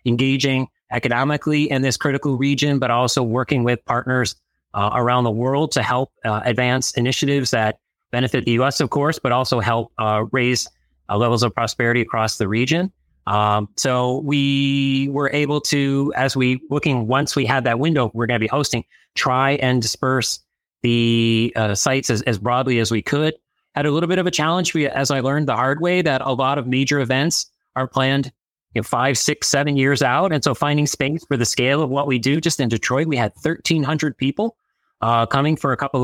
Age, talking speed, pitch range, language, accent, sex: 30-49, 200 wpm, 120-145 Hz, English, American, male